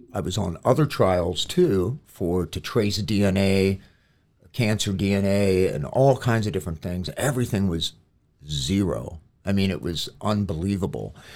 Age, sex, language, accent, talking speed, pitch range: 50-69, male, English, American, 135 wpm, 90-120 Hz